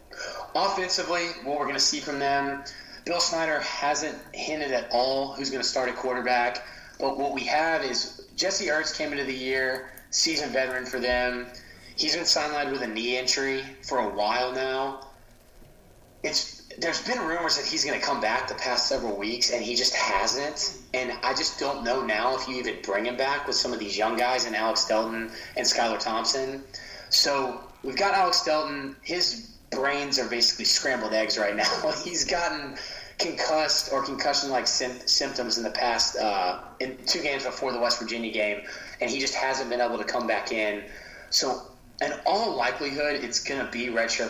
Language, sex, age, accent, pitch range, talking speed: English, male, 30-49, American, 120-140 Hz, 190 wpm